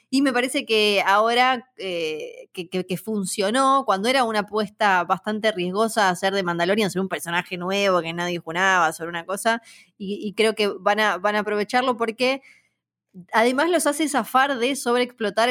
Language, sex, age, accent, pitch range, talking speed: Spanish, female, 20-39, Argentinian, 190-245 Hz, 175 wpm